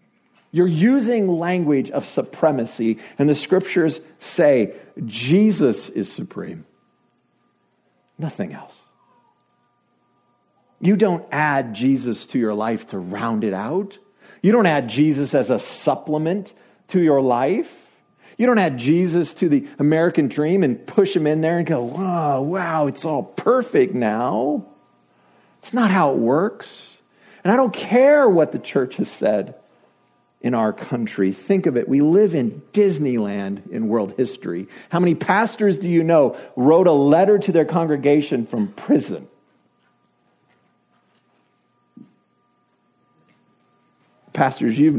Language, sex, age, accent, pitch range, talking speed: English, male, 50-69, American, 125-200 Hz, 130 wpm